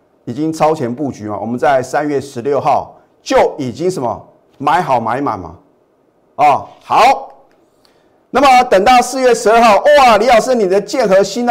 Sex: male